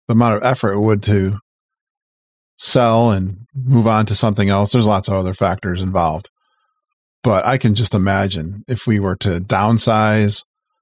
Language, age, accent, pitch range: English, 40-59, American, 100-130 Hz